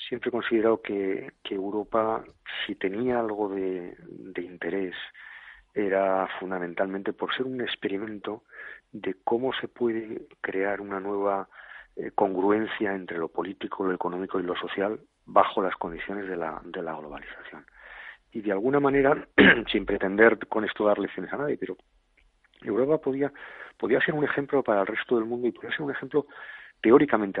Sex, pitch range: male, 95-120 Hz